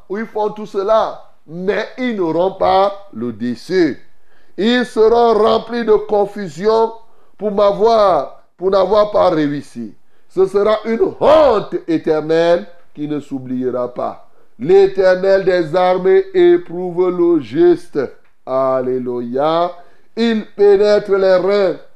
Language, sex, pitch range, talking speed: French, male, 155-230 Hz, 115 wpm